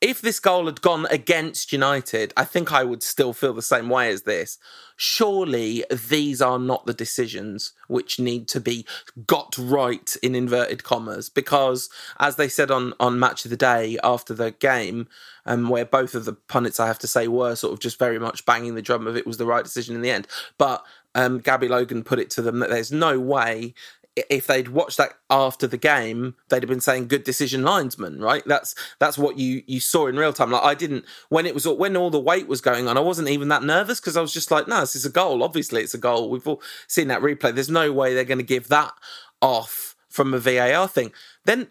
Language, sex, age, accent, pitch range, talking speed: English, male, 20-39, British, 120-160 Hz, 230 wpm